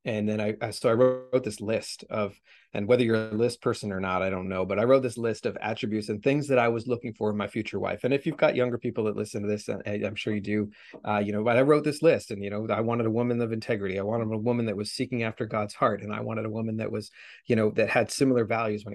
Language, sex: English, male